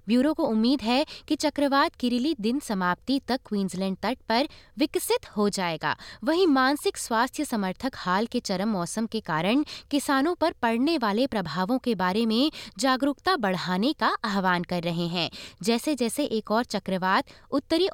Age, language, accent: 20-39, Hindi, native